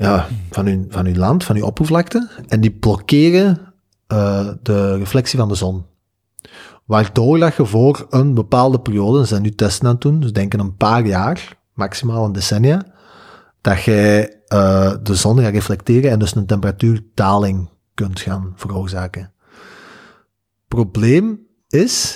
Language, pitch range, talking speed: Dutch, 100-130 Hz, 155 wpm